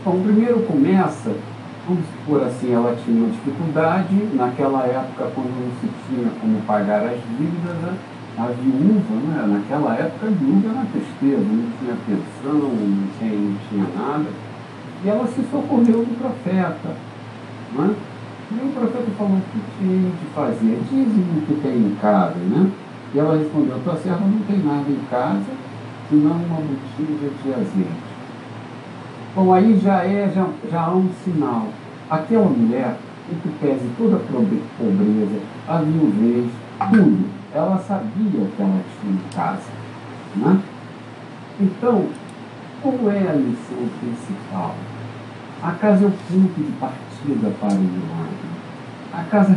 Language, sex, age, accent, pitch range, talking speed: Portuguese, male, 60-79, Brazilian, 125-200 Hz, 155 wpm